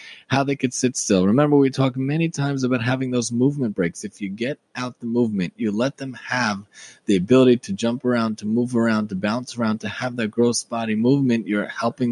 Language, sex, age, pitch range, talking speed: English, male, 20-39, 105-130 Hz, 220 wpm